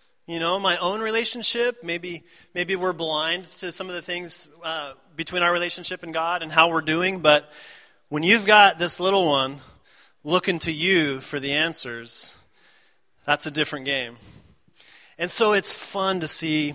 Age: 30-49